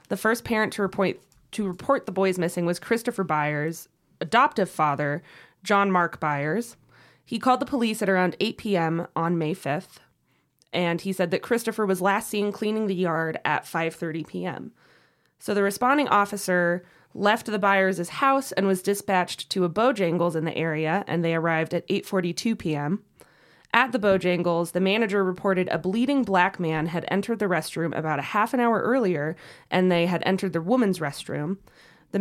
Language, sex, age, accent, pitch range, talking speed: English, female, 20-39, American, 170-215 Hz, 175 wpm